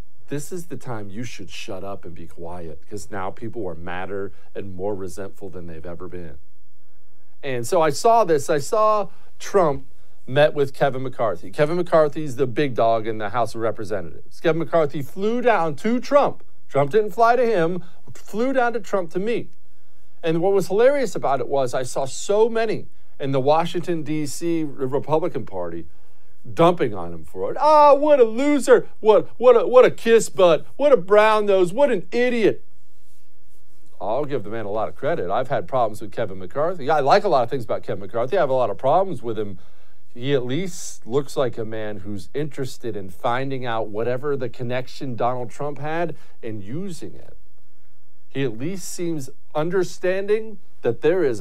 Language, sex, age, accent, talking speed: English, male, 50-69, American, 190 wpm